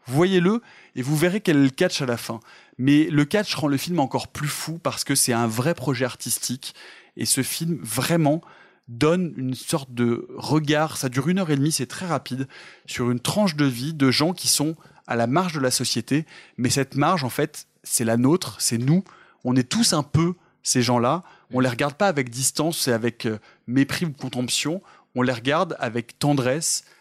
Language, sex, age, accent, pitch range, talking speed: French, male, 20-39, French, 120-155 Hz, 205 wpm